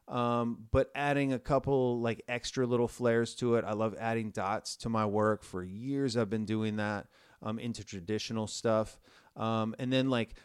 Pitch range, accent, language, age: 110-130 Hz, American, English, 30-49